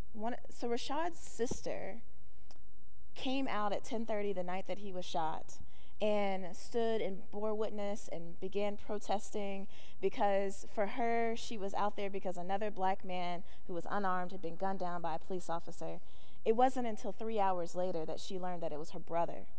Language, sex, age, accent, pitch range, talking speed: English, female, 20-39, American, 180-215 Hz, 180 wpm